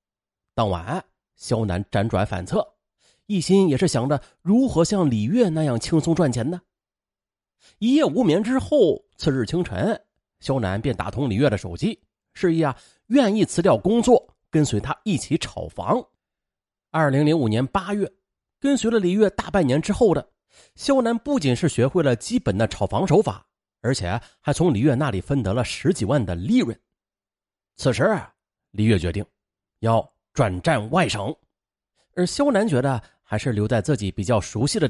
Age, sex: 30-49, male